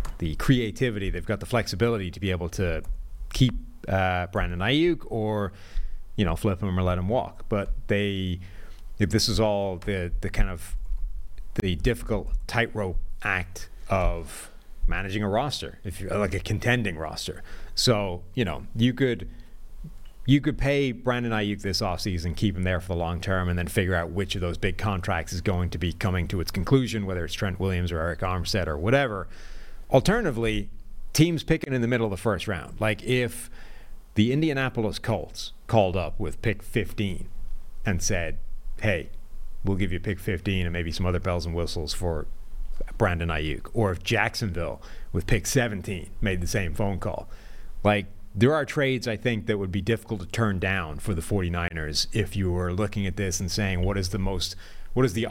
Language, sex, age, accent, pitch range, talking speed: English, male, 30-49, American, 90-110 Hz, 185 wpm